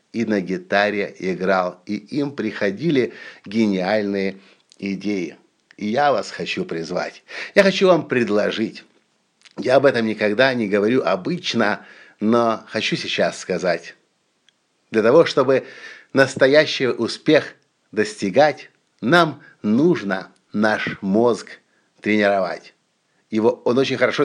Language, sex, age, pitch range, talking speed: Russian, male, 50-69, 105-145 Hz, 110 wpm